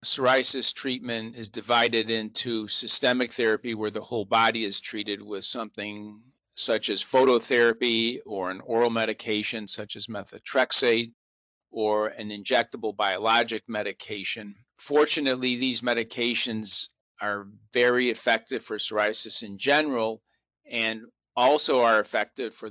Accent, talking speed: American, 120 wpm